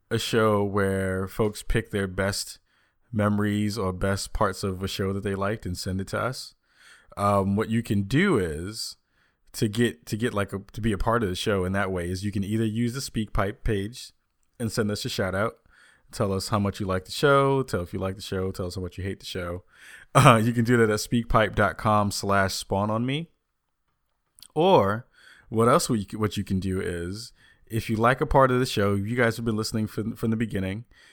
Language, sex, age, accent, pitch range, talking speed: English, male, 20-39, American, 95-115 Hz, 215 wpm